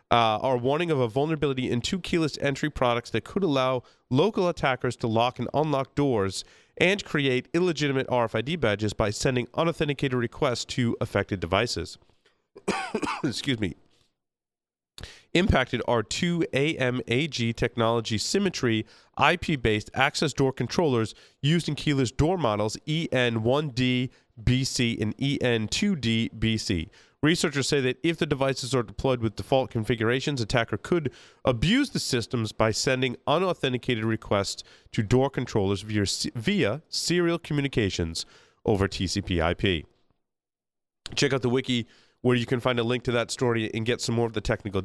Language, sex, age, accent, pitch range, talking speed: English, male, 30-49, American, 110-140 Hz, 140 wpm